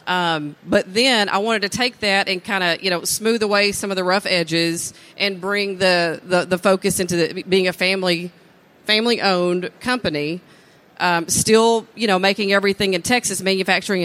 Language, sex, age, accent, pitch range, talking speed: English, female, 40-59, American, 180-230 Hz, 185 wpm